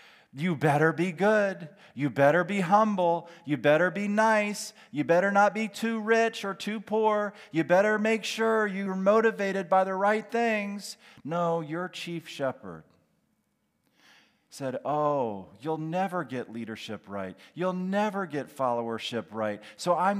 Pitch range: 160-215 Hz